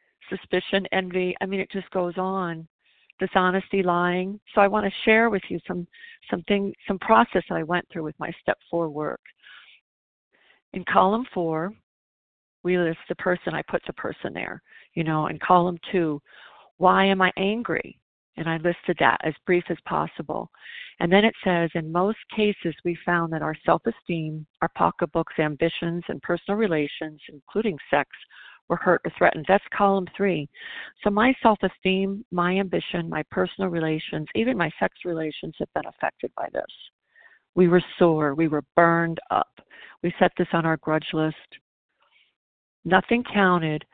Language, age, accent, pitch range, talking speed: English, 50-69, American, 165-195 Hz, 165 wpm